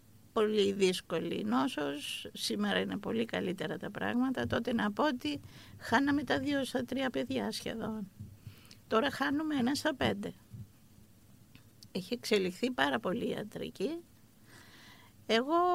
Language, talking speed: Greek, 120 wpm